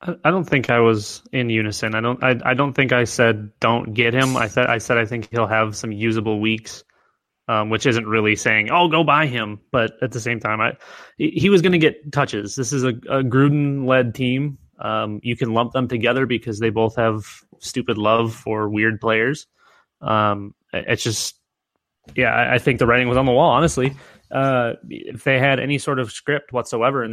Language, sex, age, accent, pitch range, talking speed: English, male, 20-39, American, 110-130 Hz, 210 wpm